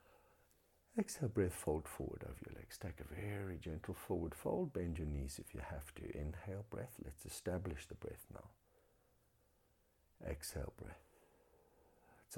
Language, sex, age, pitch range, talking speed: English, male, 60-79, 80-110 Hz, 145 wpm